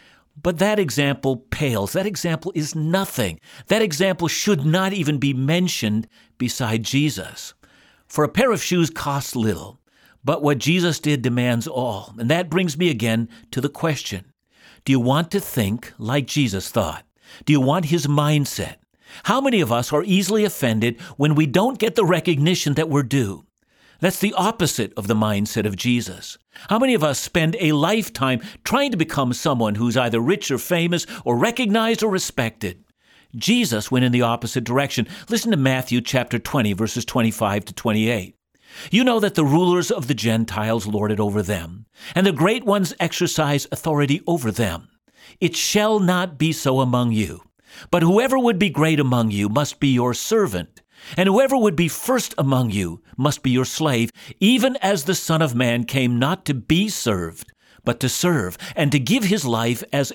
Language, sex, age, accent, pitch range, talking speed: English, male, 60-79, American, 120-180 Hz, 180 wpm